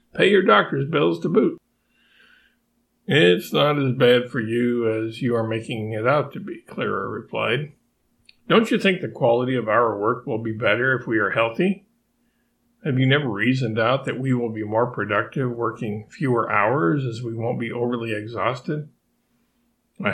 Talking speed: 175 wpm